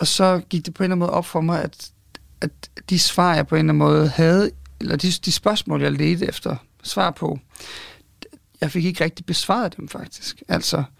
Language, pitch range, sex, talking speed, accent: Danish, 150-180 Hz, male, 220 wpm, native